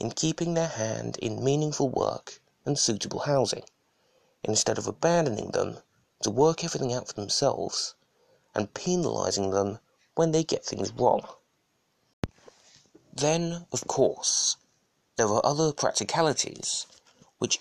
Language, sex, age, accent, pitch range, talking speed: English, male, 30-49, British, 120-160 Hz, 125 wpm